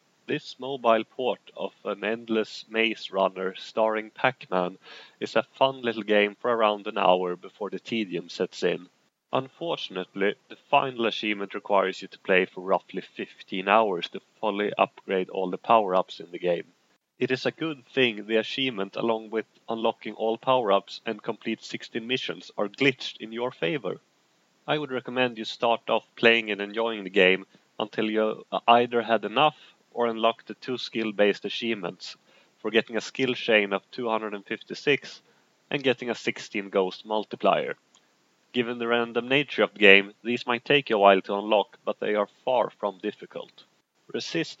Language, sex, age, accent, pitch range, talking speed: English, male, 30-49, Swedish, 105-120 Hz, 165 wpm